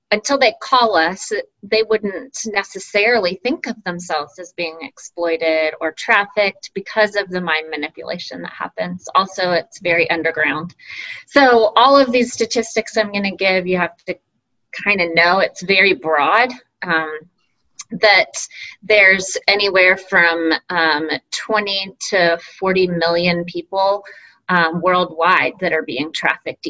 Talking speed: 135 wpm